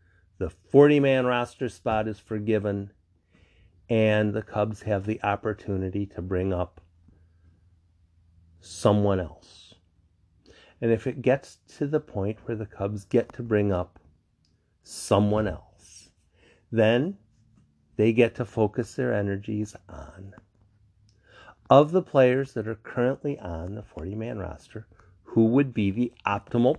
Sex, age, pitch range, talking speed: male, 50-69, 95-135 Hz, 125 wpm